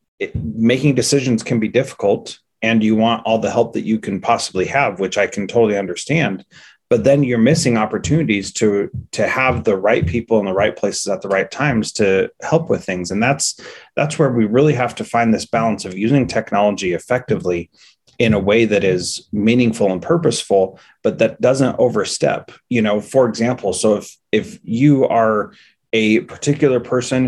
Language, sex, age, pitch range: English, male, 30-49, 110-130 Hz